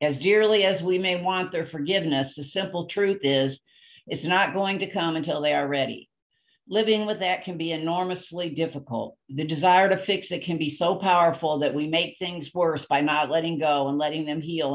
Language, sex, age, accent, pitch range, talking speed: English, female, 50-69, American, 150-185 Hz, 205 wpm